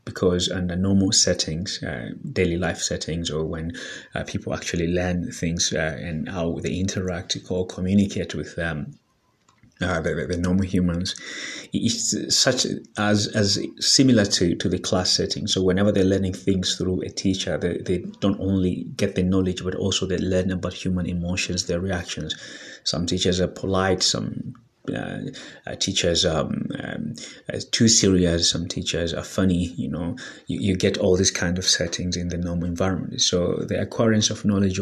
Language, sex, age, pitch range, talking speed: English, male, 30-49, 85-95 Hz, 170 wpm